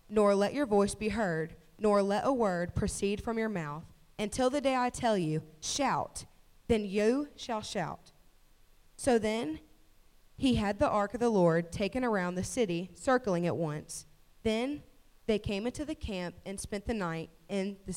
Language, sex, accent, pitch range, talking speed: English, female, American, 175-225 Hz, 175 wpm